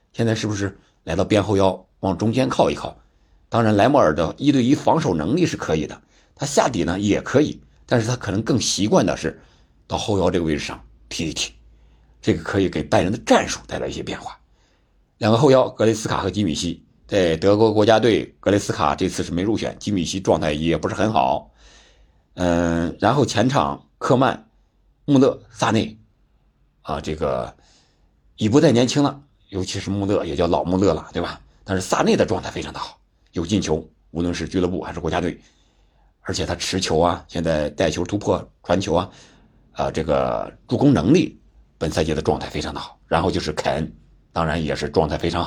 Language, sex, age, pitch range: Chinese, male, 60-79, 80-110 Hz